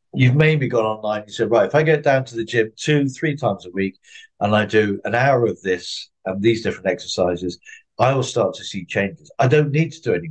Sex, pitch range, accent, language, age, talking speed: male, 115-155 Hz, British, English, 50-69, 255 wpm